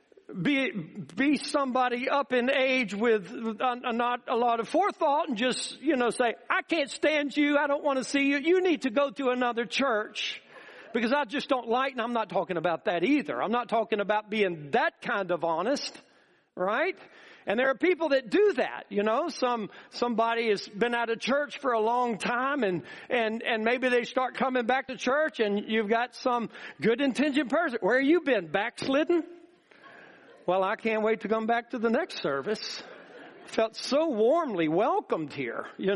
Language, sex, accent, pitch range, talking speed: English, male, American, 225-285 Hz, 195 wpm